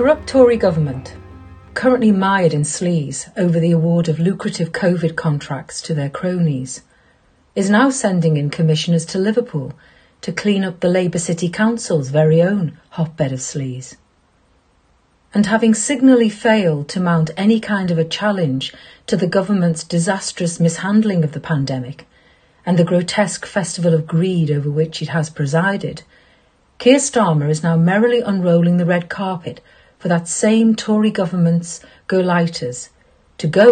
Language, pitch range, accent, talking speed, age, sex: English, 155-195 Hz, British, 145 wpm, 40-59, female